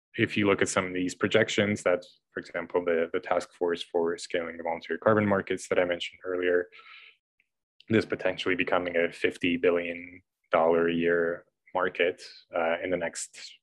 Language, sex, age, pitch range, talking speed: English, male, 20-39, 85-105 Hz, 165 wpm